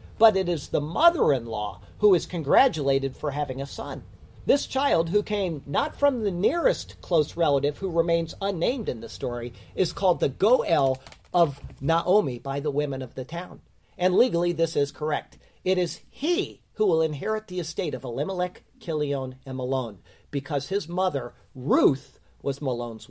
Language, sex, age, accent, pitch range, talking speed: English, male, 40-59, American, 135-185 Hz, 165 wpm